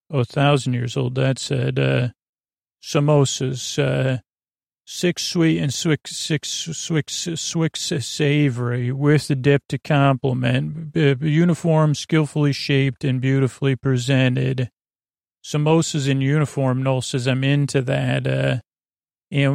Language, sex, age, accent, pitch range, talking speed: English, male, 40-59, American, 130-150 Hz, 135 wpm